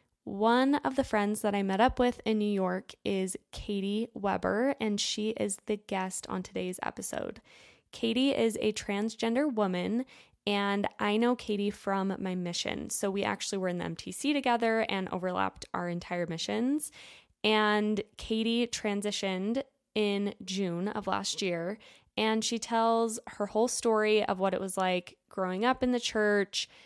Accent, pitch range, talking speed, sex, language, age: American, 190-225 Hz, 160 wpm, female, English, 10-29